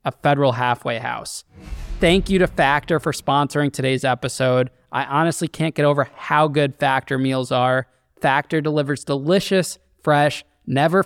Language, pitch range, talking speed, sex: English, 130-155 Hz, 145 wpm, male